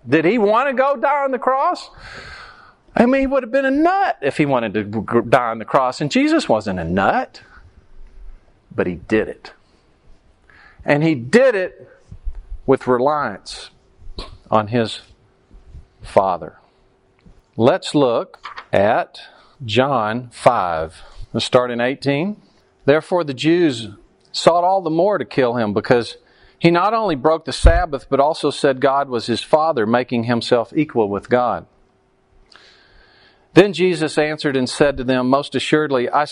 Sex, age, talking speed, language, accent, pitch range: male, 40-59, 150 wpm, English, American, 120-175 Hz